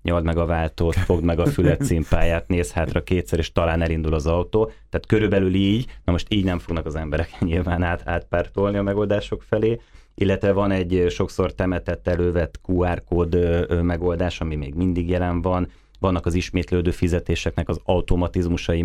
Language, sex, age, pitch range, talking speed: Hungarian, male, 30-49, 80-90 Hz, 160 wpm